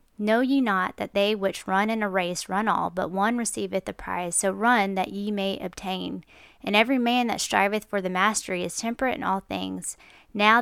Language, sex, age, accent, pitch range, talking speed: English, female, 20-39, American, 185-220 Hz, 210 wpm